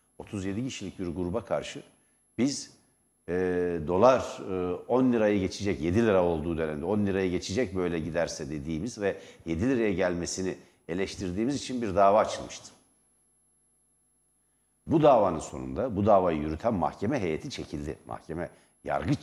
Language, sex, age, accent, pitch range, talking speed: Turkish, male, 60-79, native, 90-130 Hz, 130 wpm